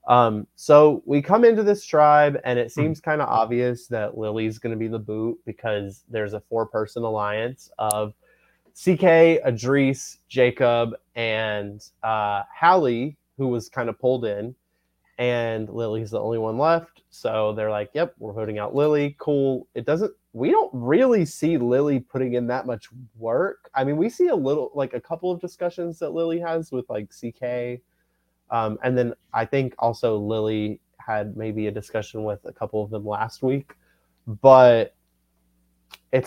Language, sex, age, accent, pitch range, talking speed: English, male, 20-39, American, 110-135 Hz, 170 wpm